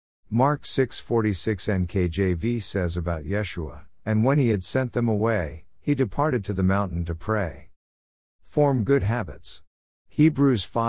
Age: 50-69